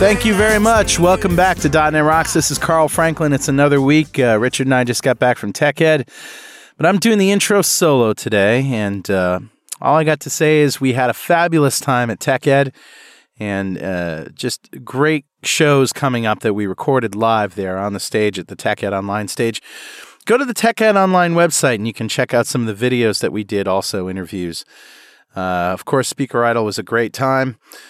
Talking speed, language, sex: 205 wpm, English, male